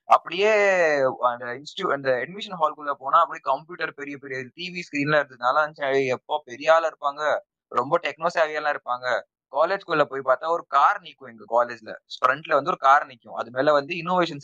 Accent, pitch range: native, 140-195 Hz